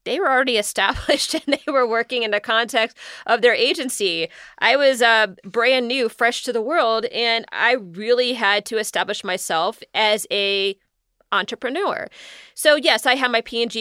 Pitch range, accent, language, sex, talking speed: 195-240 Hz, American, English, female, 170 wpm